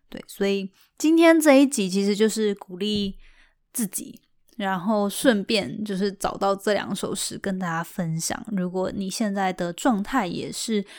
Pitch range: 180-220 Hz